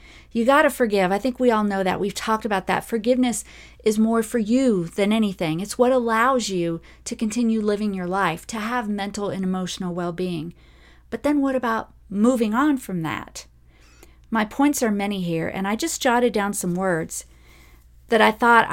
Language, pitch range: English, 170-220 Hz